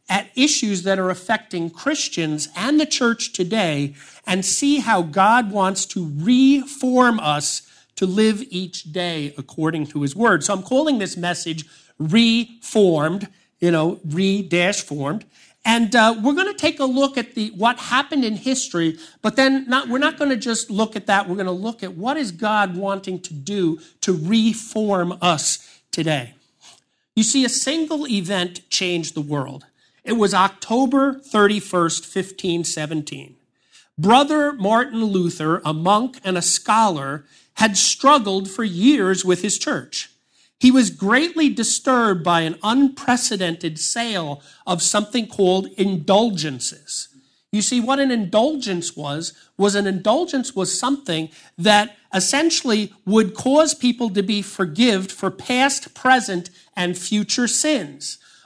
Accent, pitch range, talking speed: American, 175-245 Hz, 145 wpm